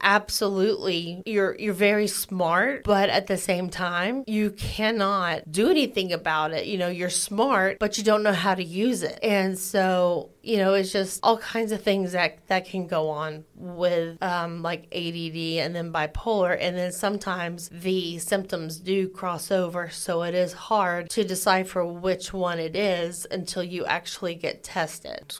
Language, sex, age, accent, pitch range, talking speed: English, female, 20-39, American, 170-200 Hz, 170 wpm